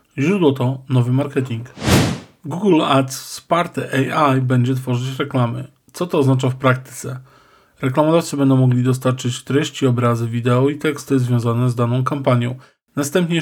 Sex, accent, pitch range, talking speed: male, native, 130-145 Hz, 135 wpm